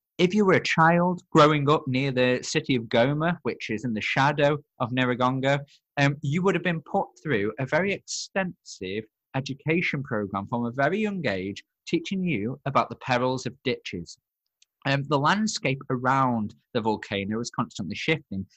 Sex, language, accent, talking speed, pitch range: male, English, British, 165 wpm, 115-155 Hz